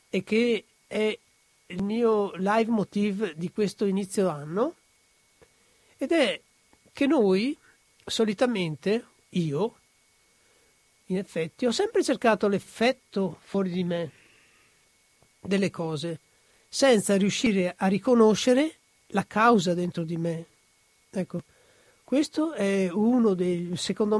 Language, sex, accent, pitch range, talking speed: Italian, male, native, 165-220 Hz, 105 wpm